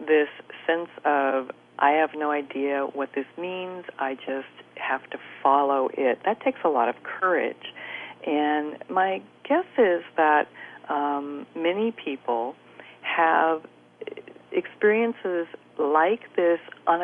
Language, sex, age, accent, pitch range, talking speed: English, female, 50-69, American, 140-170 Hz, 125 wpm